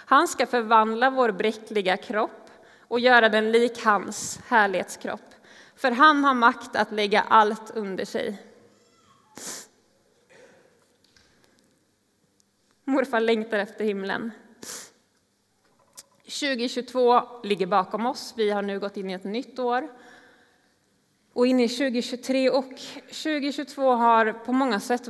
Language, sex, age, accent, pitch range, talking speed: Swedish, female, 20-39, native, 215-245 Hz, 115 wpm